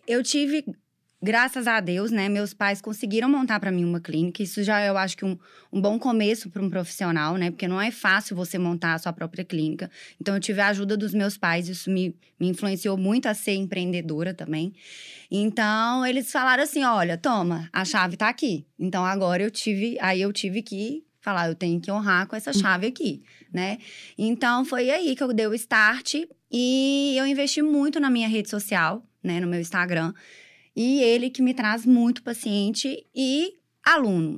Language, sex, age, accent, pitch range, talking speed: English, female, 20-39, Brazilian, 195-260 Hz, 195 wpm